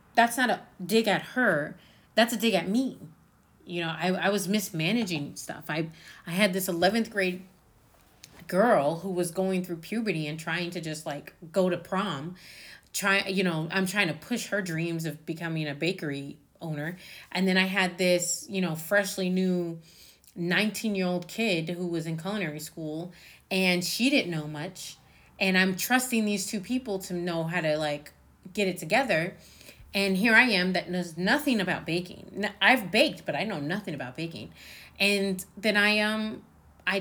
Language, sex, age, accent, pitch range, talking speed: English, female, 30-49, American, 170-210 Hz, 180 wpm